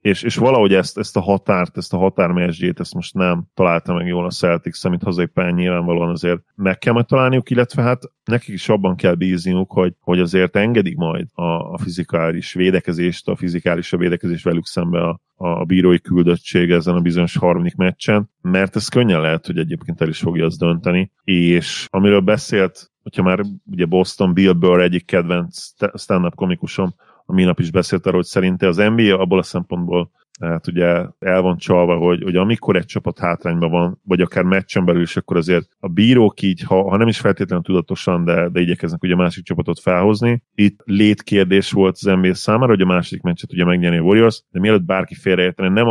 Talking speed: 190 wpm